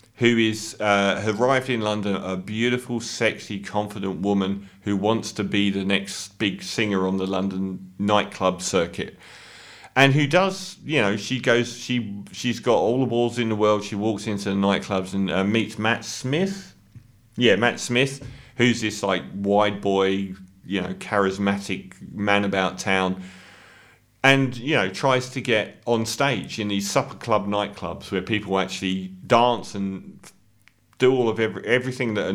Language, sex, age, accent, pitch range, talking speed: English, male, 40-59, British, 95-120 Hz, 165 wpm